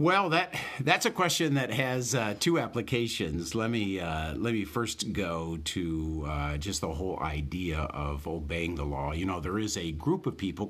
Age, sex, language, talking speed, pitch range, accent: 50-69, male, English, 195 wpm, 90-125 Hz, American